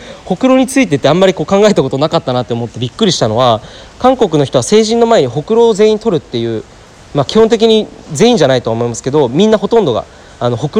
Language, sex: Japanese, male